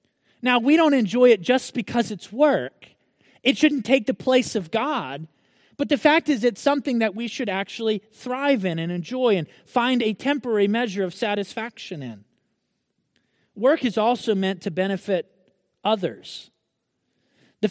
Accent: American